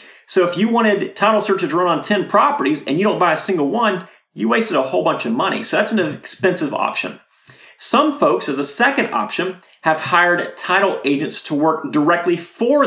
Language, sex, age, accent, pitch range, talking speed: English, male, 30-49, American, 155-220 Hz, 200 wpm